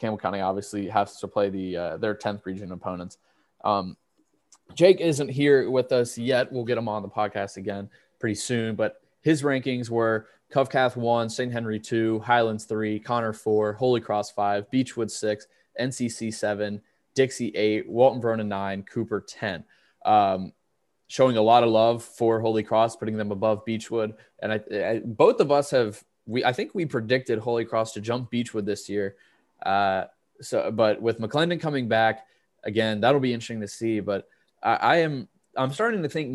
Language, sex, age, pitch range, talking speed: English, male, 20-39, 105-125 Hz, 180 wpm